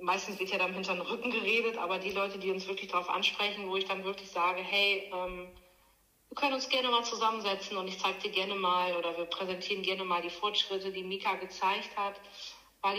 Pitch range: 185-215 Hz